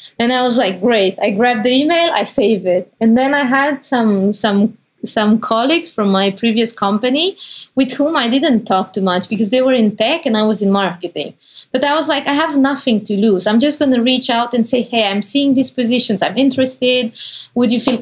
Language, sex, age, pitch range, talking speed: English, female, 20-39, 210-270 Hz, 225 wpm